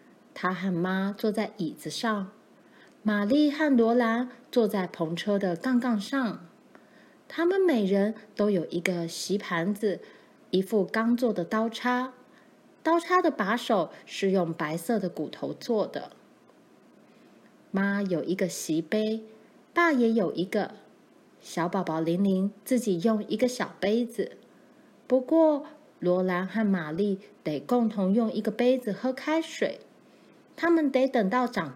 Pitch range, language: 185-250 Hz, Chinese